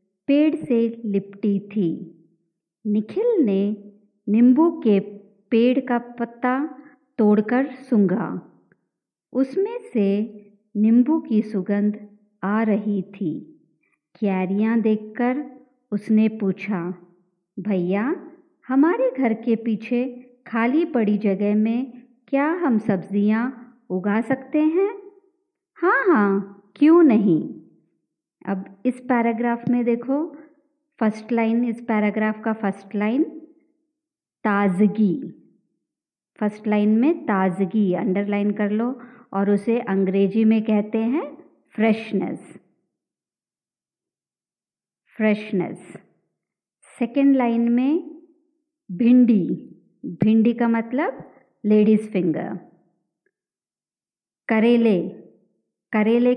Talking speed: 90 wpm